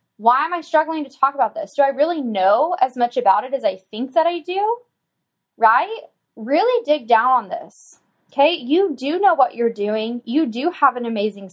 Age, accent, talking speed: 10-29, American, 210 wpm